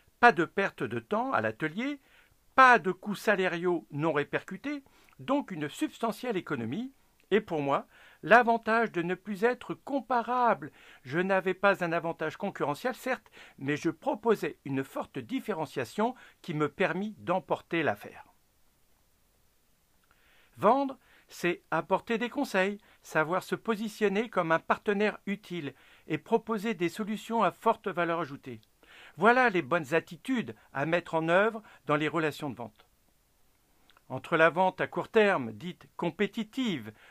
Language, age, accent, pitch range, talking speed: French, 60-79, French, 165-225 Hz, 135 wpm